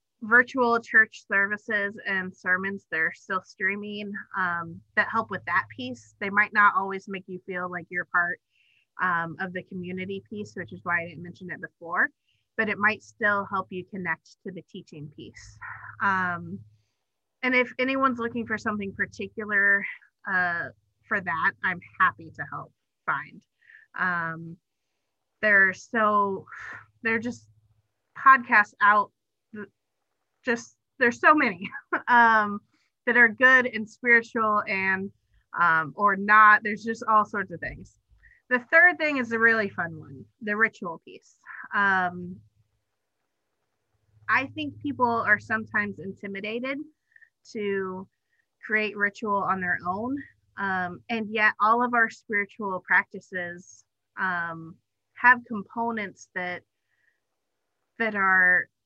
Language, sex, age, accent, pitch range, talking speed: English, female, 30-49, American, 180-230 Hz, 130 wpm